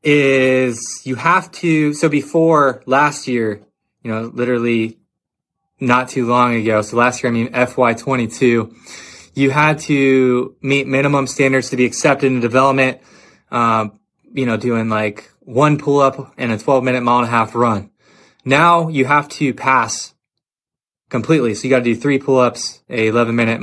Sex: male